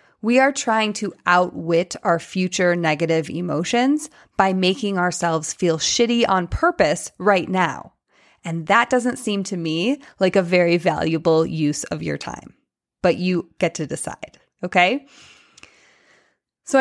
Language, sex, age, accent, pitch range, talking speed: English, female, 20-39, American, 175-225 Hz, 140 wpm